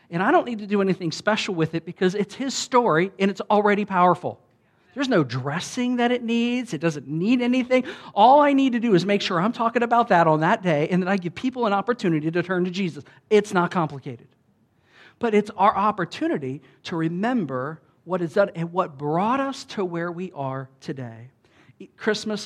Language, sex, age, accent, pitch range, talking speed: English, male, 50-69, American, 155-210 Hz, 205 wpm